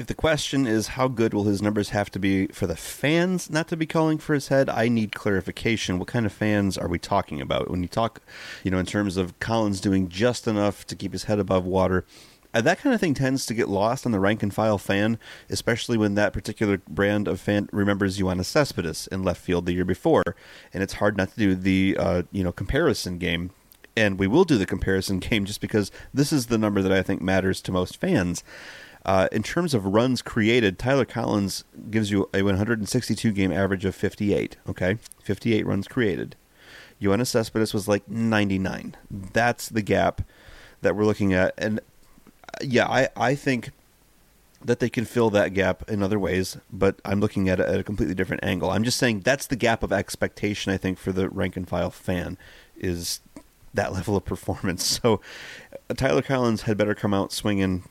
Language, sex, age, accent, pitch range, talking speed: English, male, 30-49, American, 95-115 Hz, 205 wpm